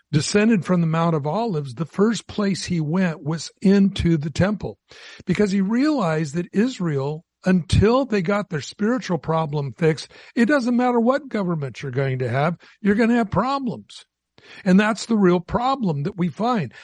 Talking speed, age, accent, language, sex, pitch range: 175 wpm, 60-79, American, English, male, 165-210 Hz